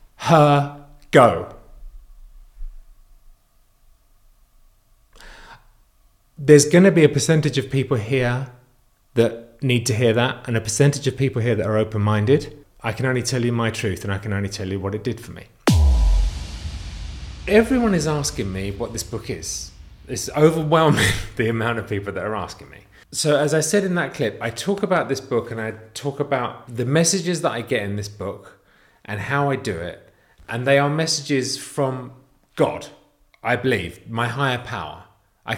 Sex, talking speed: male, 170 wpm